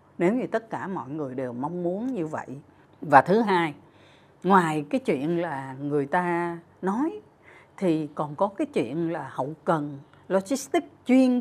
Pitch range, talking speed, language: 150-225 Hz, 165 wpm, Vietnamese